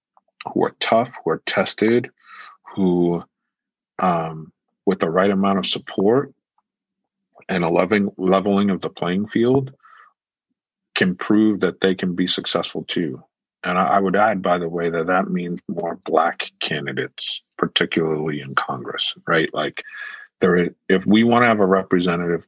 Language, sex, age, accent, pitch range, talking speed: English, male, 50-69, American, 80-95 Hz, 150 wpm